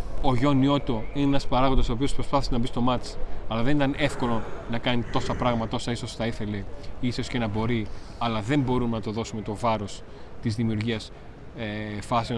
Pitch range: 105-135 Hz